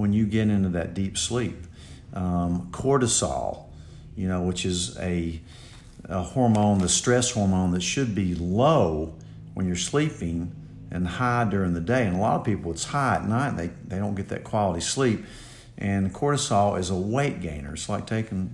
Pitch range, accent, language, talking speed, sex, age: 90-115 Hz, American, English, 185 wpm, male, 50-69